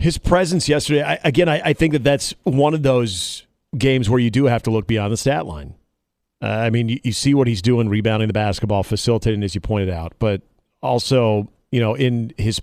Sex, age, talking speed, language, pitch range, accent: male, 40-59, 220 wpm, English, 110-140 Hz, American